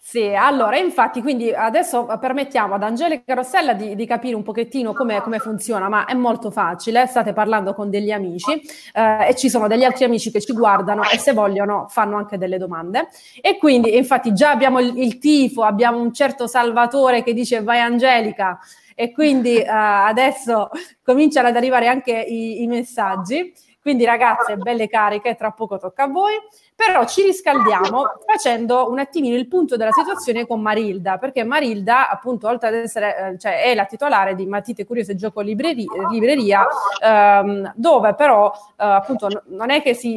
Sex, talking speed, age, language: female, 170 wpm, 30-49, Italian